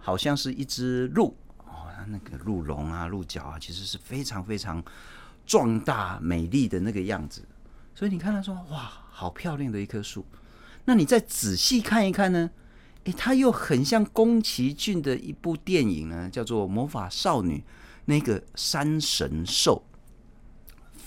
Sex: male